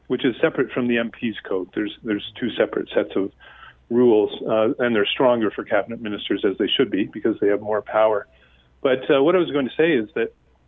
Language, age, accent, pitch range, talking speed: English, 40-59, American, 110-135 Hz, 225 wpm